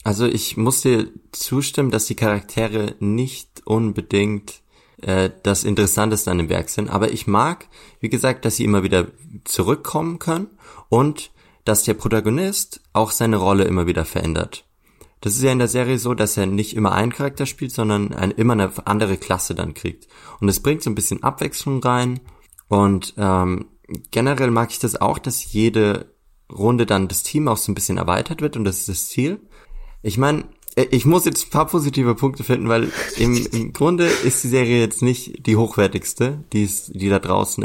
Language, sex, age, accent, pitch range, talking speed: German, male, 20-39, German, 100-130 Hz, 185 wpm